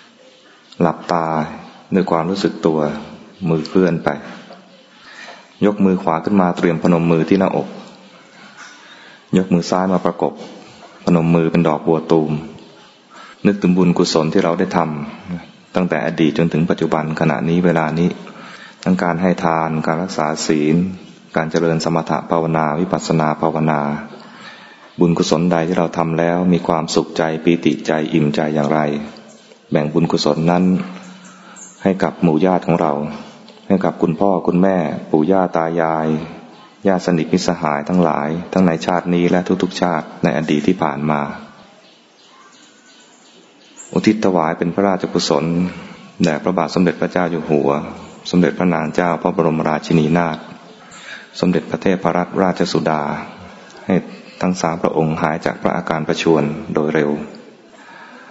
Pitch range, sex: 80-90 Hz, male